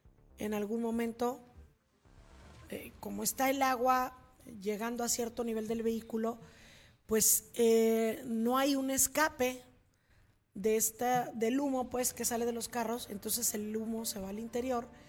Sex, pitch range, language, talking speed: female, 215-250 Hz, Spanish, 145 wpm